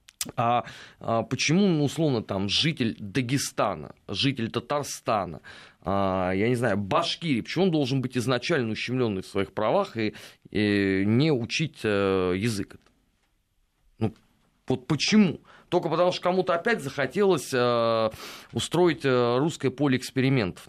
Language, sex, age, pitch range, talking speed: Russian, male, 30-49, 105-145 Hz, 115 wpm